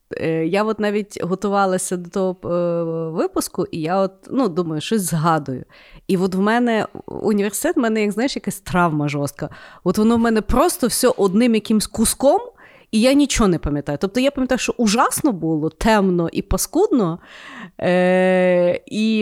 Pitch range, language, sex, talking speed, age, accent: 180-235 Hz, Ukrainian, female, 160 wpm, 30-49, native